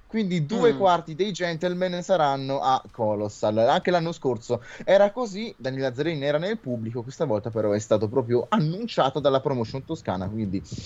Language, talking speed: Italian, 160 wpm